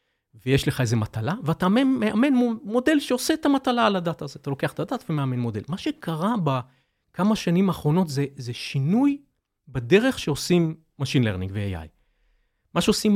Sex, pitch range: male, 130-195 Hz